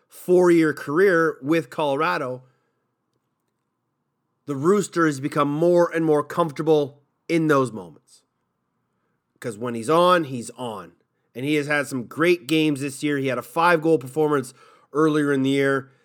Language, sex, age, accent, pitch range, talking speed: English, male, 30-49, American, 125-160 Hz, 145 wpm